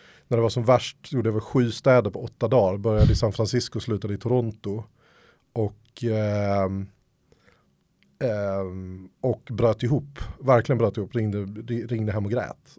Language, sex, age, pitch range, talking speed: Swedish, male, 30-49, 105-125 Hz, 165 wpm